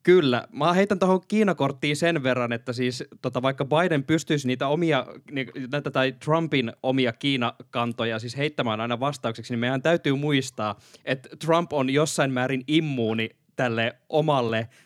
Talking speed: 145 wpm